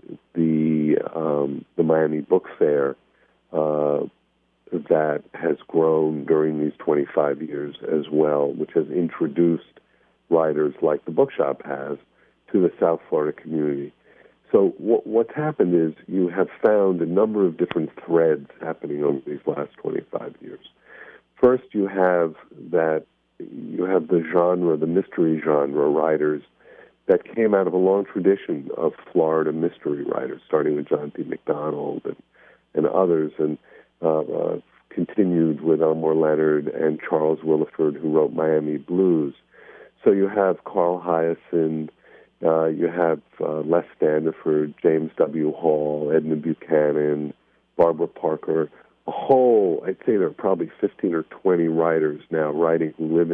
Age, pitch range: 50-69, 75-85 Hz